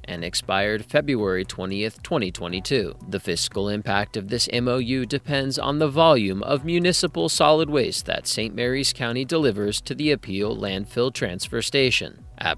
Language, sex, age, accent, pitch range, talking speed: English, male, 40-59, American, 100-140 Hz, 150 wpm